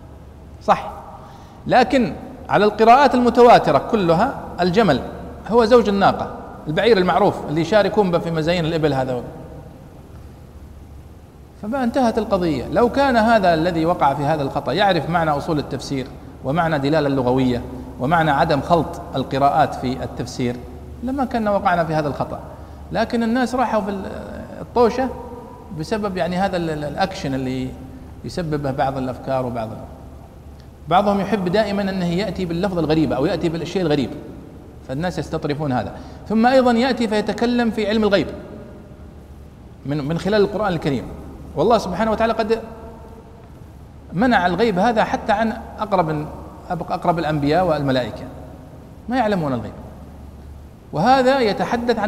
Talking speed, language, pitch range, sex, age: 125 wpm, Arabic, 135-220 Hz, male, 50-69